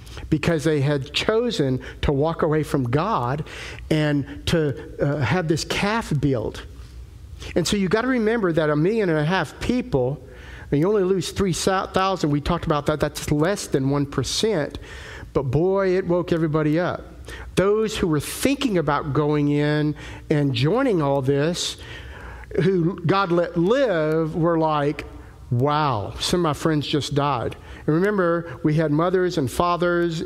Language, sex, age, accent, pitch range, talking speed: English, male, 50-69, American, 140-185 Hz, 155 wpm